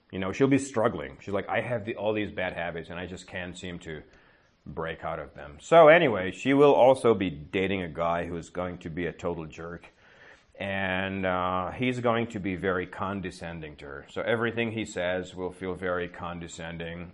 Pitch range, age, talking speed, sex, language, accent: 90-110 Hz, 40-59, 205 wpm, male, Czech, American